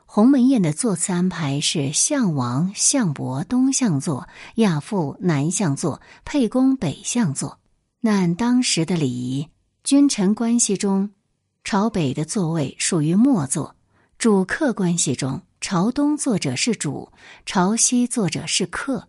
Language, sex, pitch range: Chinese, female, 155-245 Hz